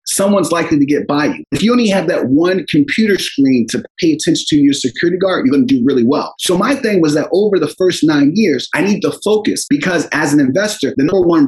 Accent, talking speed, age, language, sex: American, 250 wpm, 30-49, English, male